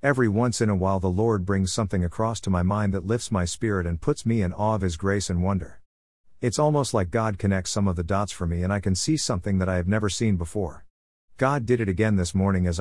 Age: 50-69